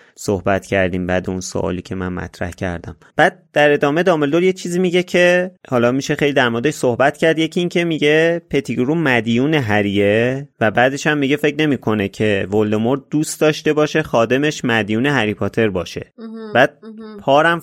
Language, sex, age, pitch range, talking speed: Persian, male, 30-49, 110-150 Hz, 160 wpm